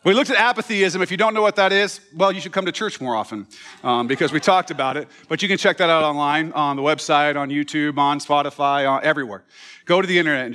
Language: English